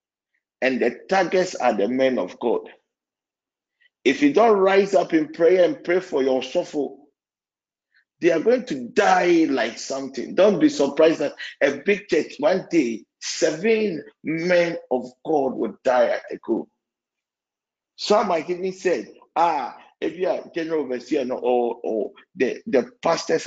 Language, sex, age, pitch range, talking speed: English, male, 50-69, 125-200 Hz, 160 wpm